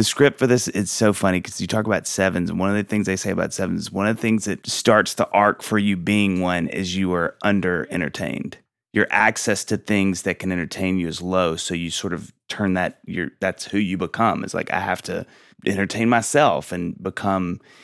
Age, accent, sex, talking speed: 30-49, American, male, 230 wpm